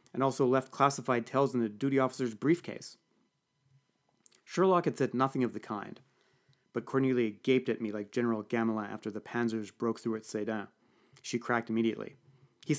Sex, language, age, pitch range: male, English, 30-49, 120-150 Hz